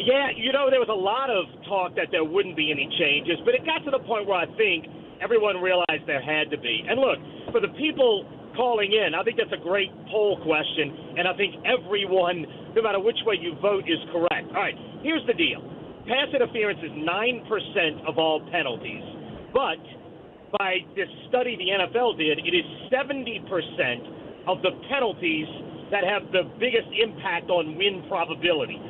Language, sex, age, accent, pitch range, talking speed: English, male, 40-59, American, 170-270 Hz, 185 wpm